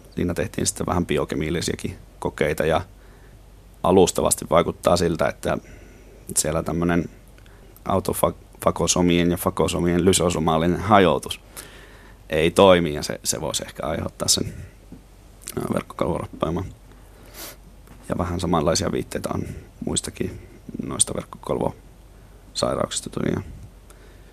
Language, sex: Finnish, male